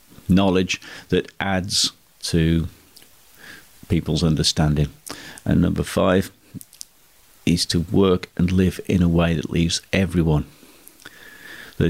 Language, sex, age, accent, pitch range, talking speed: English, male, 50-69, British, 85-100 Hz, 105 wpm